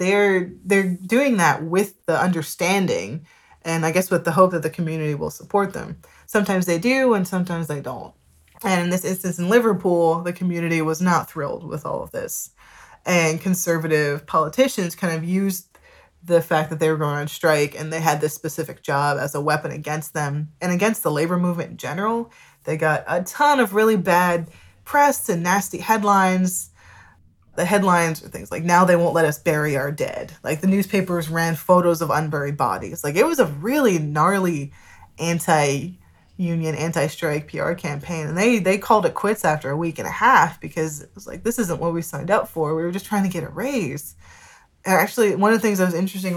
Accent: American